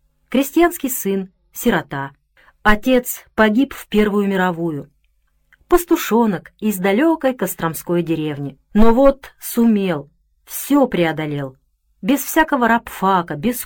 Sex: female